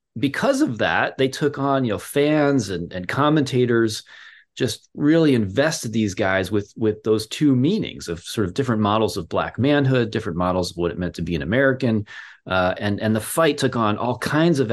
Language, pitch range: English, 95-130 Hz